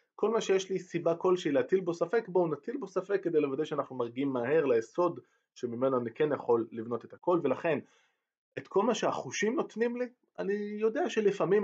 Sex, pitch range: male, 125-190 Hz